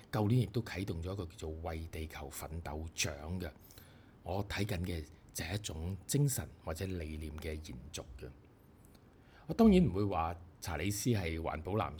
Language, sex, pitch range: Chinese, male, 80-115 Hz